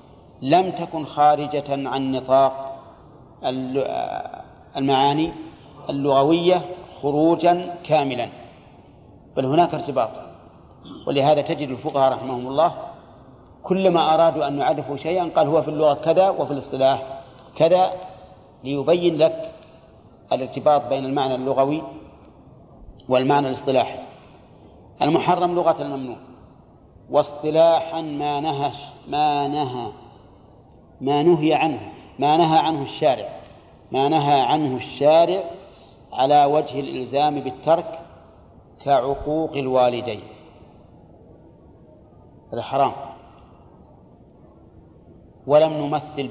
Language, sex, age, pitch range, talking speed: Arabic, male, 40-59, 135-160 Hz, 85 wpm